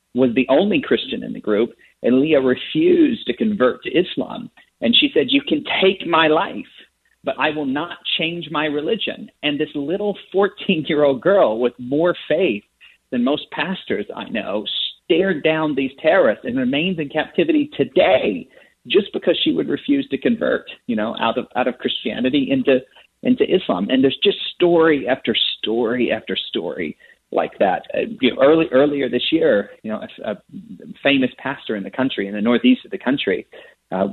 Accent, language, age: American, English, 40-59